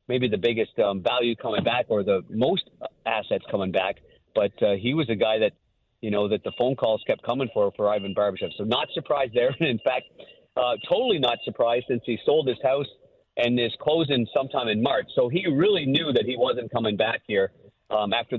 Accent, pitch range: American, 110-140 Hz